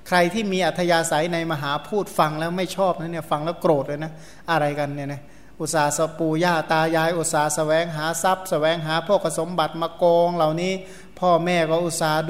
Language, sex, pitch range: Thai, male, 155-180 Hz